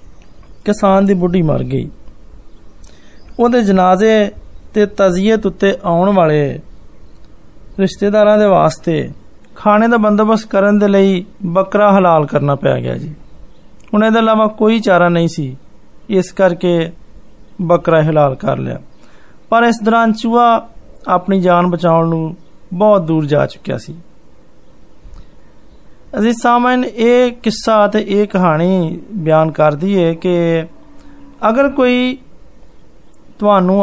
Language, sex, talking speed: Hindi, male, 105 wpm